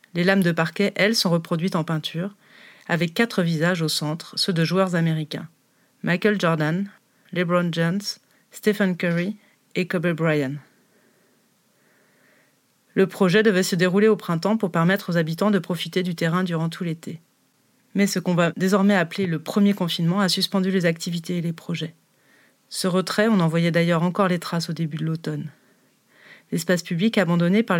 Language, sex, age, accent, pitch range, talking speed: French, female, 30-49, French, 170-195 Hz, 170 wpm